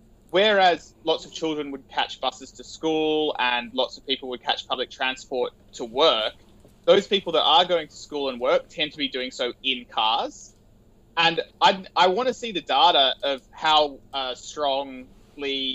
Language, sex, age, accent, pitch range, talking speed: English, male, 20-39, Australian, 125-160 Hz, 180 wpm